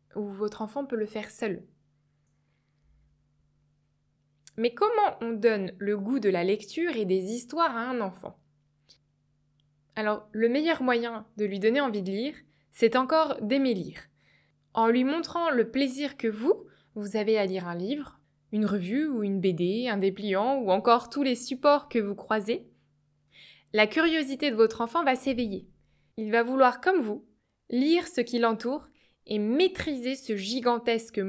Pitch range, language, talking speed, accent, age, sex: 190-255 Hz, French, 160 wpm, French, 20-39, female